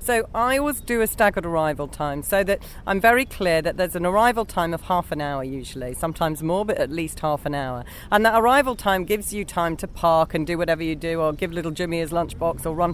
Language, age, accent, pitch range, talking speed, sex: English, 40-59, British, 150-205 Hz, 245 wpm, female